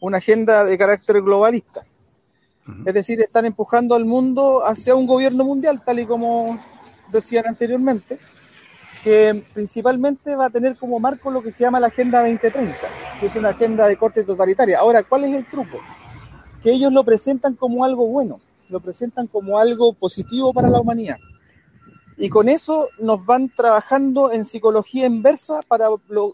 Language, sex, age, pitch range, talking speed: Spanish, male, 40-59, 205-250 Hz, 165 wpm